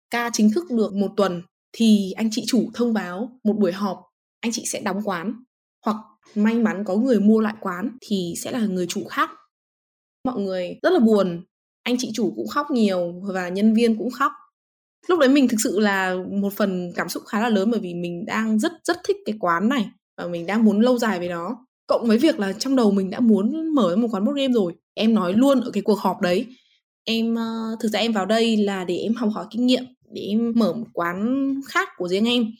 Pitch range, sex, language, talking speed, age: 195-250 Hz, female, Vietnamese, 230 wpm, 20-39